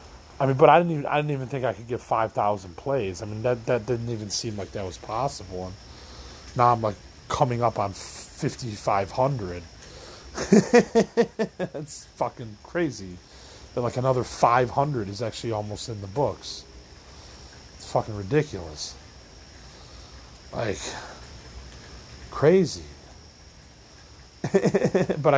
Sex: male